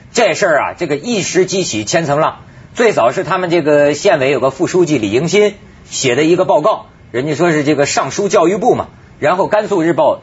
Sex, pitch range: male, 160-225 Hz